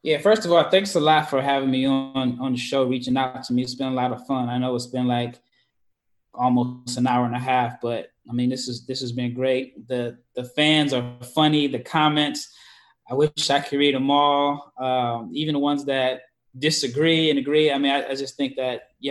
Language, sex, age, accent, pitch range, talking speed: English, male, 20-39, American, 125-140 Hz, 230 wpm